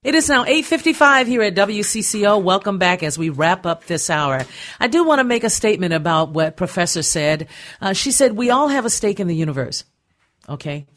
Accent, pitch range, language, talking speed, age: American, 150-195 Hz, English, 210 wpm, 50-69